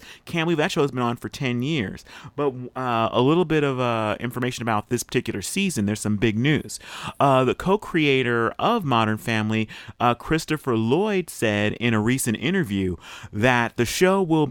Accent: American